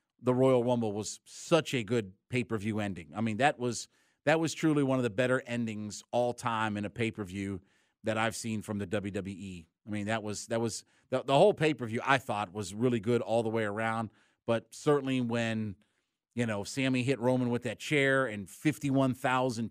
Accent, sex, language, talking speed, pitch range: American, male, English, 195 wpm, 115-135 Hz